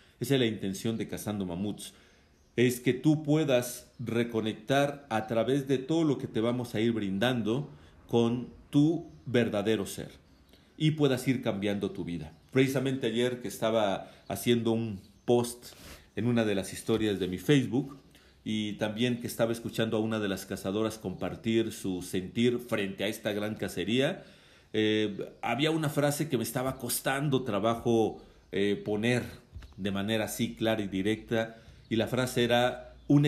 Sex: male